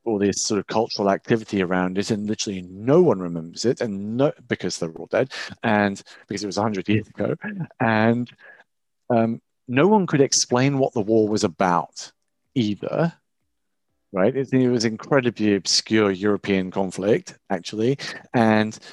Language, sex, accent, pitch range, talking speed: English, male, British, 100-140 Hz, 155 wpm